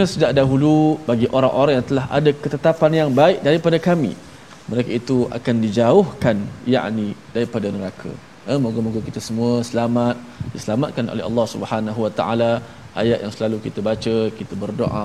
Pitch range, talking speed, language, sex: 110-135 Hz, 150 wpm, Malayalam, male